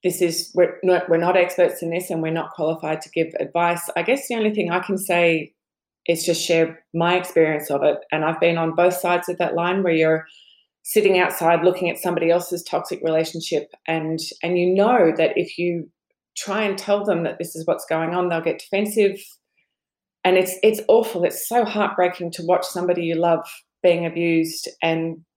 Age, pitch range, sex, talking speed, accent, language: 20-39, 170-195 Hz, female, 200 wpm, Australian, English